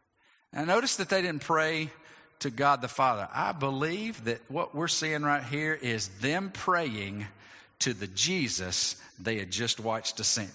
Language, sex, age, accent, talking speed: English, male, 50-69, American, 165 wpm